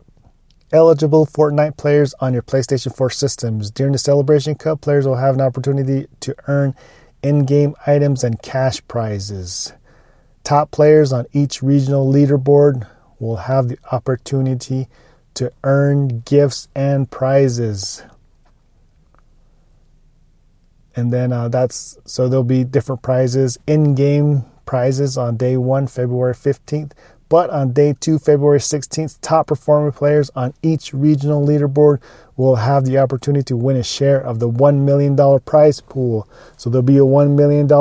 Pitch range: 130-145 Hz